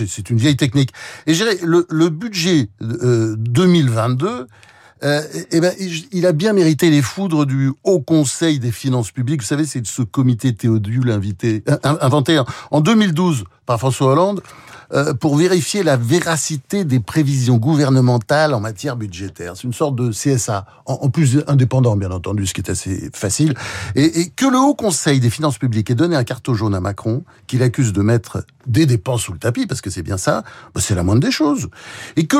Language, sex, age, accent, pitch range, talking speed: French, male, 60-79, French, 115-155 Hz, 195 wpm